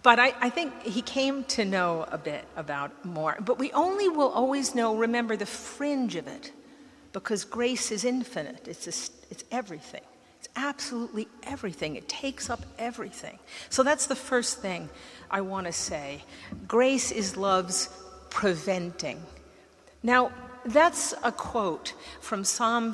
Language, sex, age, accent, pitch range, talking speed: English, female, 50-69, American, 200-260 Hz, 145 wpm